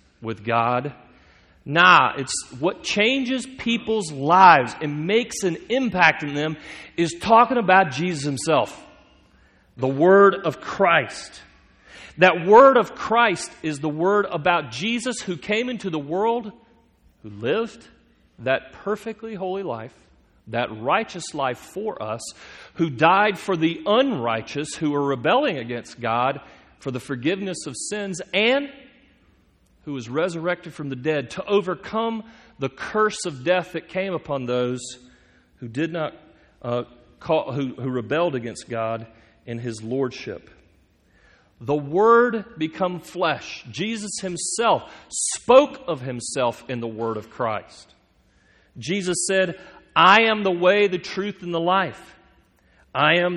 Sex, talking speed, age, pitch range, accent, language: male, 135 wpm, 40-59, 130-205 Hz, American, English